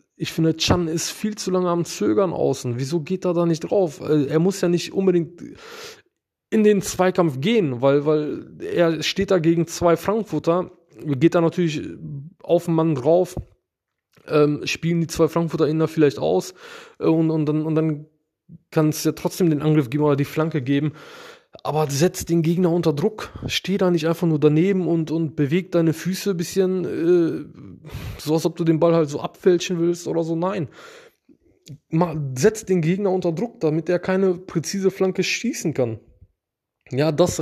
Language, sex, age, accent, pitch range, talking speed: German, male, 20-39, German, 140-180 Hz, 180 wpm